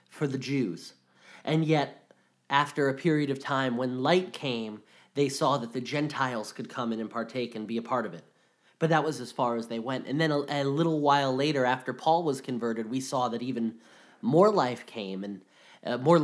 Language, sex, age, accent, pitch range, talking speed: English, male, 30-49, American, 130-155 Hz, 215 wpm